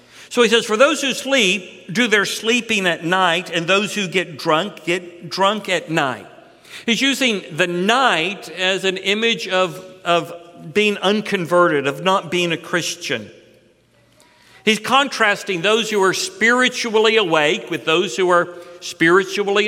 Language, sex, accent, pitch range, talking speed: English, male, American, 180-220 Hz, 150 wpm